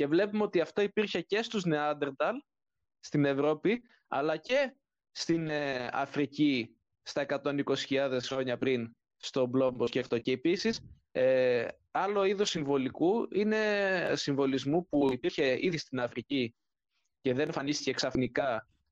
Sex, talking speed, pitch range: male, 125 wpm, 135-195 Hz